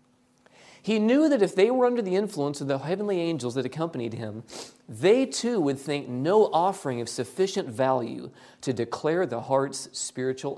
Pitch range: 125-185 Hz